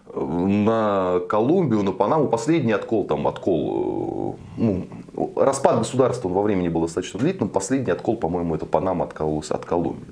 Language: Russian